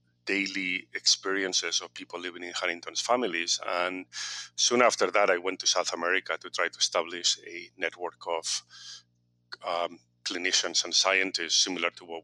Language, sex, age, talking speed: English, male, 40-59, 150 wpm